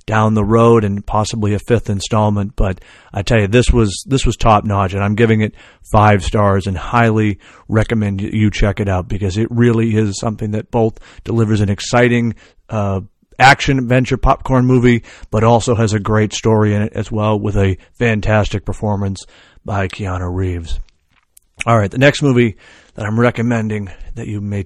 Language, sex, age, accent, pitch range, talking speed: English, male, 40-59, American, 100-120 Hz, 180 wpm